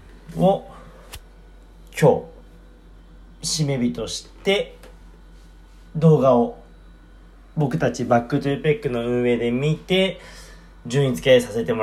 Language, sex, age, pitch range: Japanese, male, 30-49, 115-180 Hz